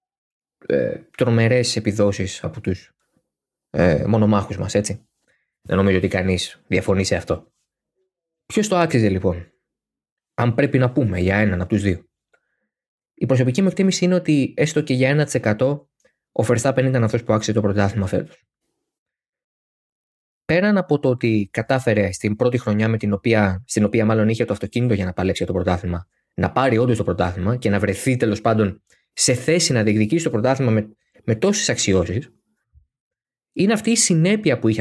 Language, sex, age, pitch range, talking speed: Greek, male, 20-39, 100-135 Hz, 155 wpm